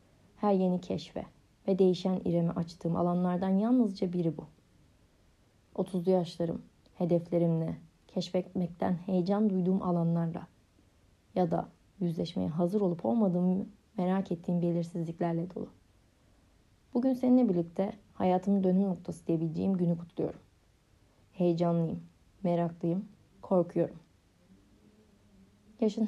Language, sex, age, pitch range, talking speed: Turkish, female, 30-49, 115-195 Hz, 95 wpm